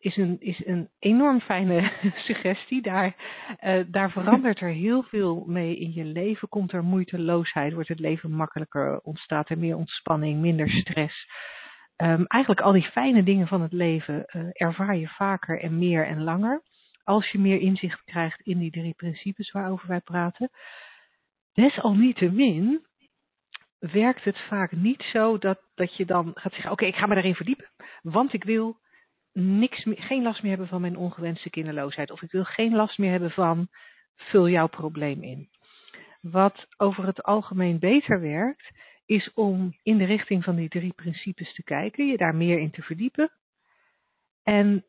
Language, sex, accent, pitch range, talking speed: Dutch, female, Dutch, 170-215 Hz, 170 wpm